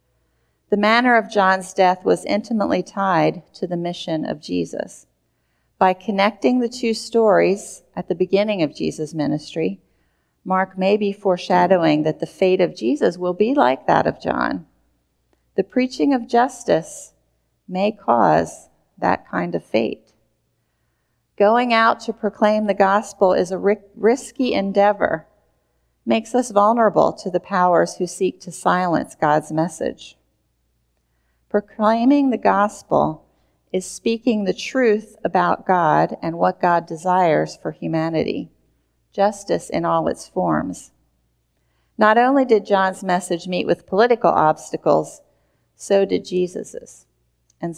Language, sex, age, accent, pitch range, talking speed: English, female, 40-59, American, 155-205 Hz, 130 wpm